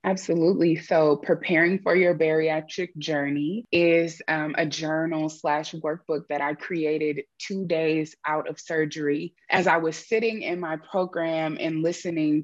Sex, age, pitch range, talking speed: female, 20-39, 150-175 Hz, 145 wpm